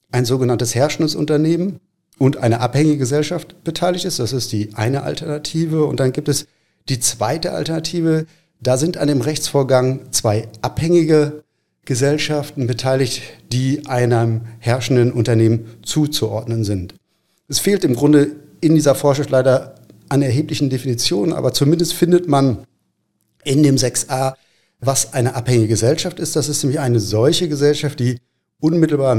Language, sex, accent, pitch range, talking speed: German, male, German, 120-150 Hz, 140 wpm